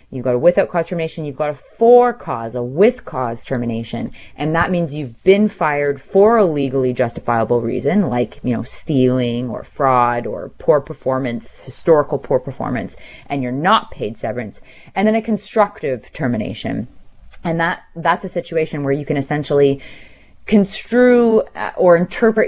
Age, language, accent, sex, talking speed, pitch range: 30-49, English, American, female, 160 wpm, 130-175 Hz